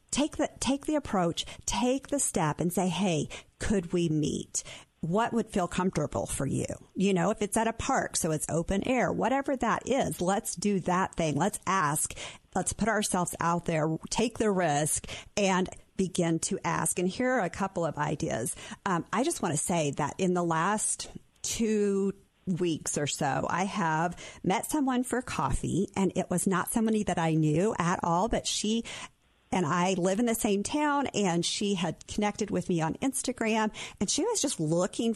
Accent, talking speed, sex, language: American, 190 wpm, female, English